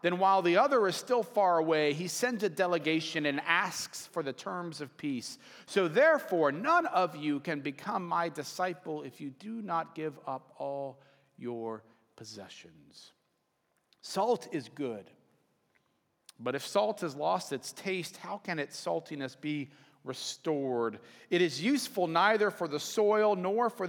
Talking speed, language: 155 wpm, English